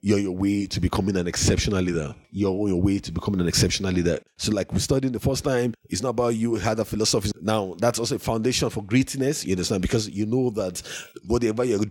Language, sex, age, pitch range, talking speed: English, male, 30-49, 110-135 Hz, 230 wpm